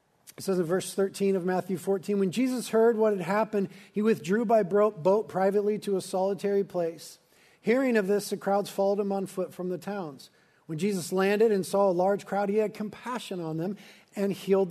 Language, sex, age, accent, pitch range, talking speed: English, male, 40-59, American, 170-210 Hz, 205 wpm